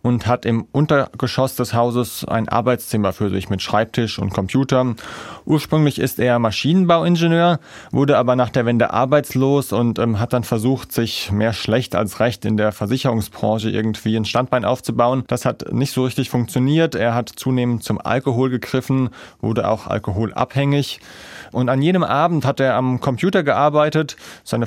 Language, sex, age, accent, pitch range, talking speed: German, male, 30-49, German, 115-135 Hz, 160 wpm